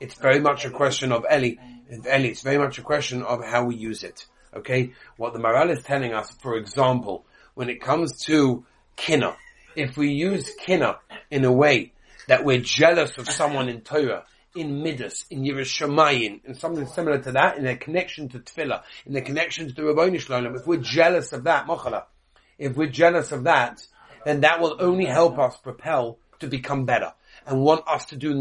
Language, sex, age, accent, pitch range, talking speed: English, male, 40-59, British, 135-185 Hz, 195 wpm